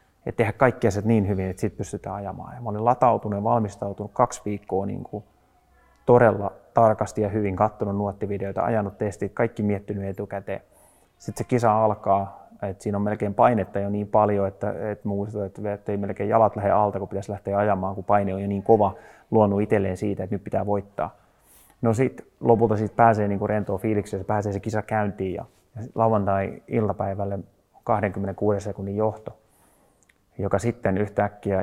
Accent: native